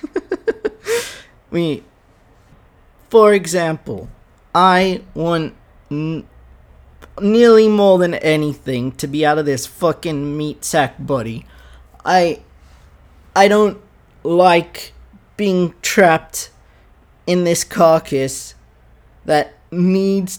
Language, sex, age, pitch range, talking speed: English, male, 20-39, 135-185 Hz, 90 wpm